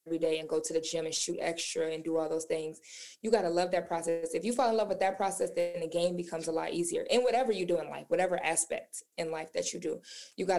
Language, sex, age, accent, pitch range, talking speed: English, female, 20-39, American, 165-210 Hz, 290 wpm